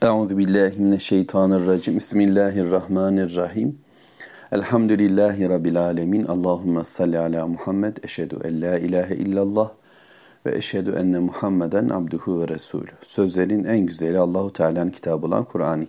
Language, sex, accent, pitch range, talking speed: Turkish, male, native, 85-100 Hz, 115 wpm